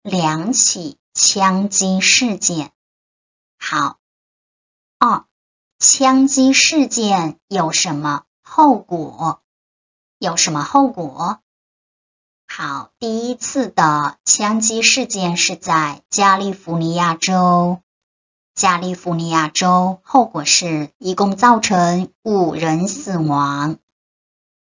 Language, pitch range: English, 170-230 Hz